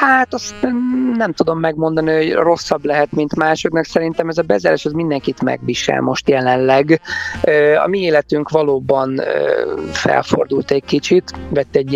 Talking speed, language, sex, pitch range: 135 wpm, Hungarian, male, 130-160 Hz